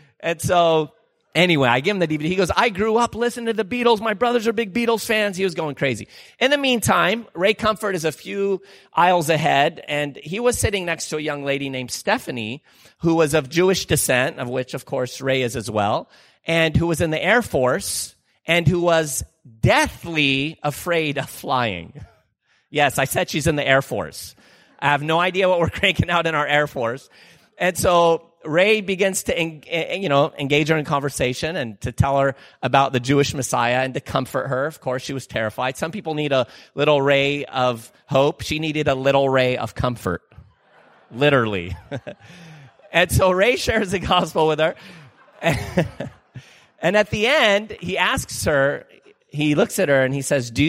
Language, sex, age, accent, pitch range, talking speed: English, male, 40-59, American, 130-175 Hz, 190 wpm